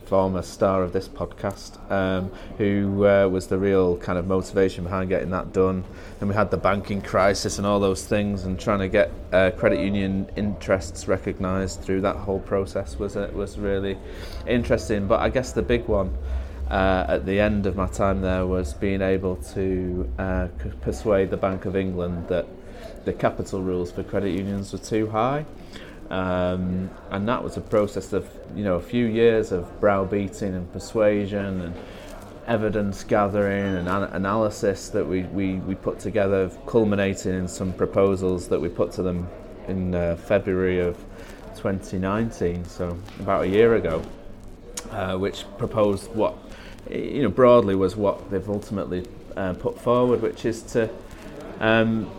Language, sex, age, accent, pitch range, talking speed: English, male, 30-49, British, 95-100 Hz, 165 wpm